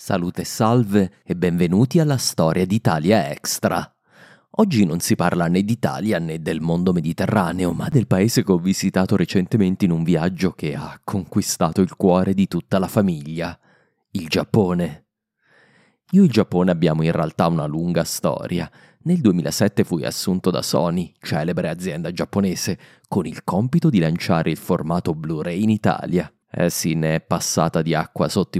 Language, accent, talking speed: Italian, native, 160 wpm